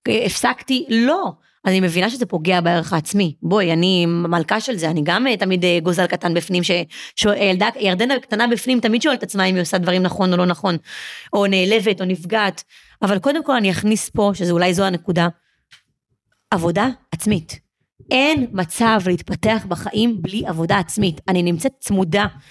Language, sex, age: Hebrew, female, 30-49